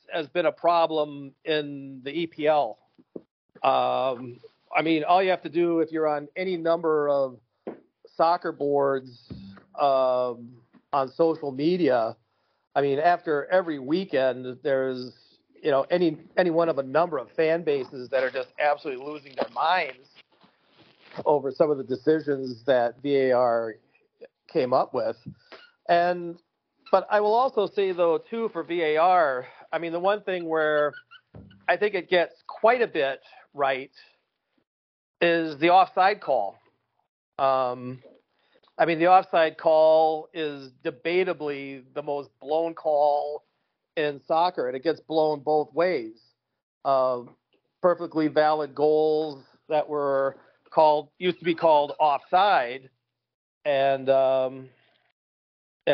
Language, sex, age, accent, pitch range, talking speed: English, male, 40-59, American, 135-170 Hz, 135 wpm